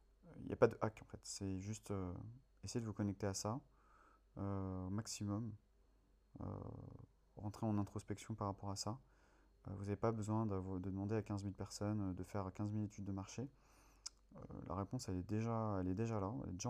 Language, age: French, 30-49